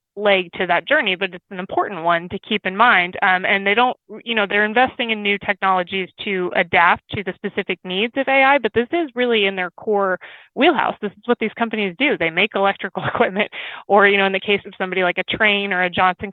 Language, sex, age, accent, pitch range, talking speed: English, female, 20-39, American, 180-205 Hz, 235 wpm